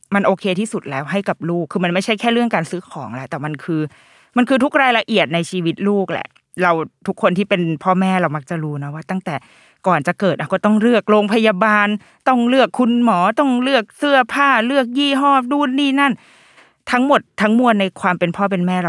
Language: Thai